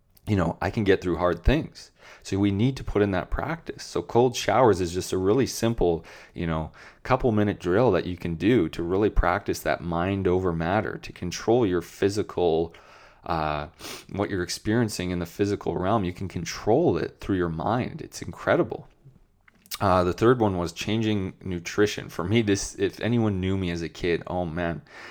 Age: 20-39